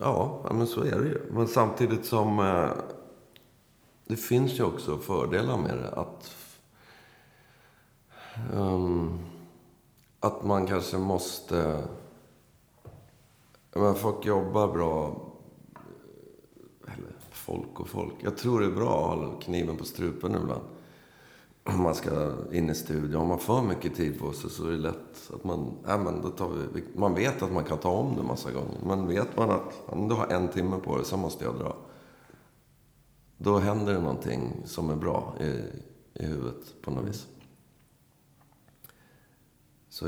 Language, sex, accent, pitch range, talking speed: Swedish, male, native, 80-100 Hz, 155 wpm